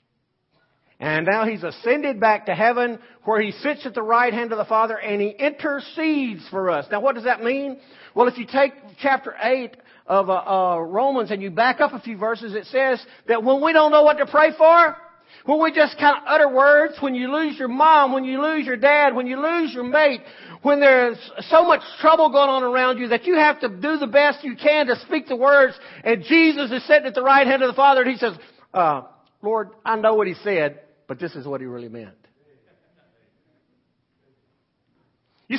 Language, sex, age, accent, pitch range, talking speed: English, male, 50-69, American, 195-285 Hz, 215 wpm